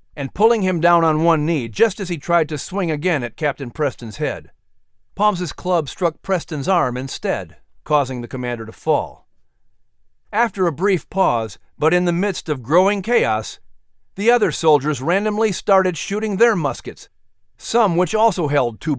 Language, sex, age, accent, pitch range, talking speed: English, male, 50-69, American, 130-180 Hz, 170 wpm